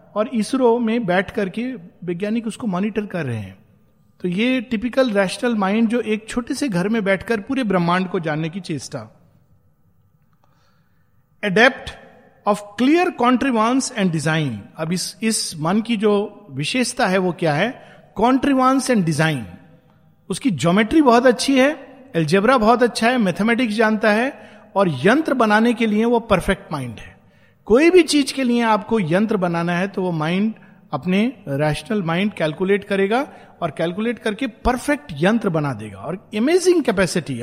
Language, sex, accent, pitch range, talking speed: Hindi, male, native, 180-240 Hz, 155 wpm